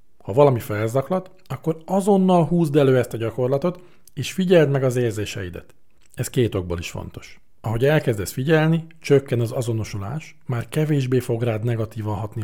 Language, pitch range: Hungarian, 110-150 Hz